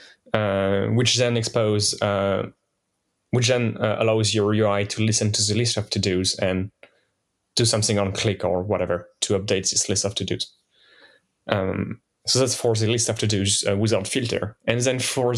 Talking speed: 185 wpm